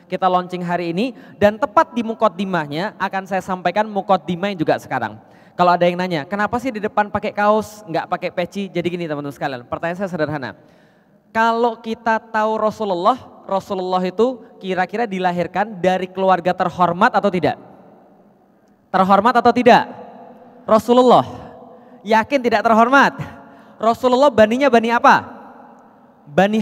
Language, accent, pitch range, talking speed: Indonesian, native, 200-255 Hz, 135 wpm